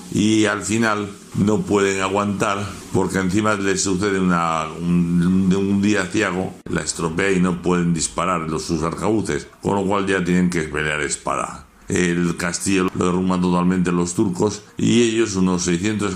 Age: 60-79